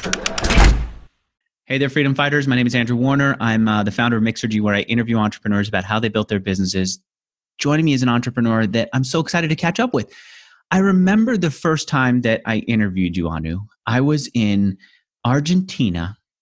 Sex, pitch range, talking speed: male, 105-145 Hz, 190 wpm